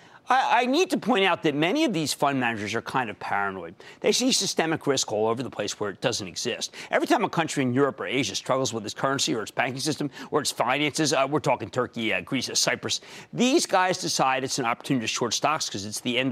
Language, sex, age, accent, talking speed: English, male, 50-69, American, 245 wpm